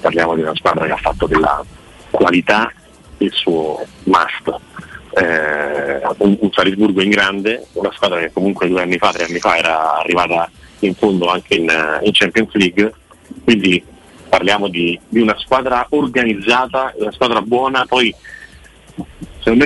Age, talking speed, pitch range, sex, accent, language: 40-59, 150 wpm, 90-115 Hz, male, native, Italian